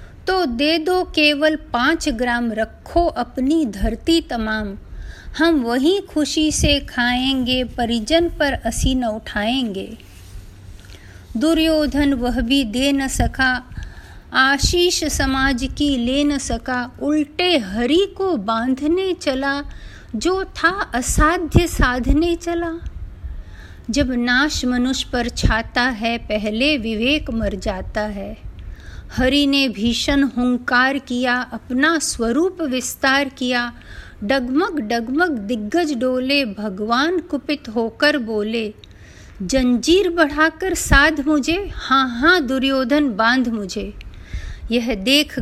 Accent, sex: native, female